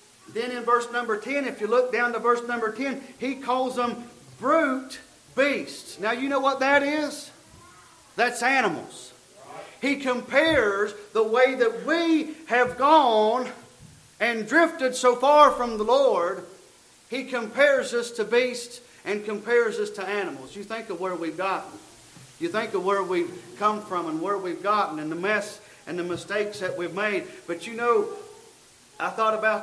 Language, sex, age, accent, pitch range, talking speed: English, male, 40-59, American, 205-245 Hz, 170 wpm